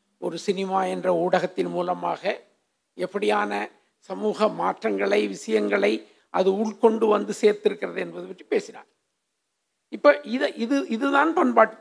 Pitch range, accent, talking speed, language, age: 165-210 Hz, native, 105 wpm, Tamil, 50-69